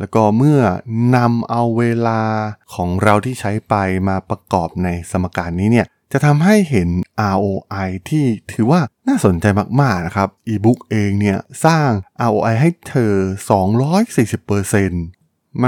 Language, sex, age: Thai, male, 20-39